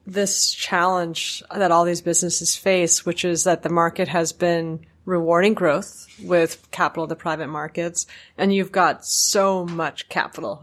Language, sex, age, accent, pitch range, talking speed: English, female, 30-49, American, 170-210 Hz, 160 wpm